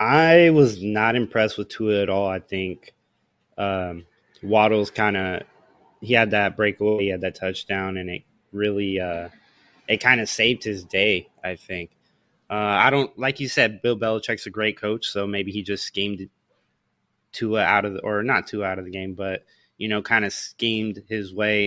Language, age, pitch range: English, 20-39, 100-115 Hz